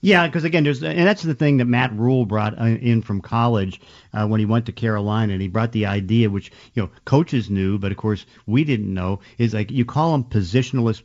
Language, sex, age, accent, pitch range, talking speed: English, male, 50-69, American, 105-120 Hz, 235 wpm